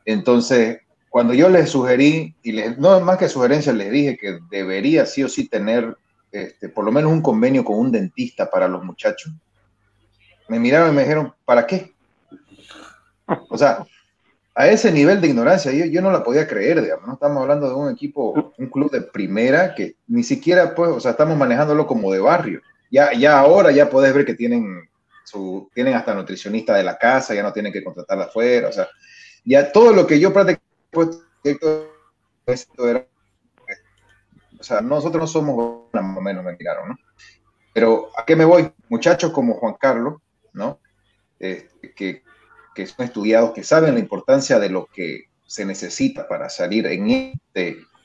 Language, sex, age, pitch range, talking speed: Spanish, male, 30-49, 115-170 Hz, 175 wpm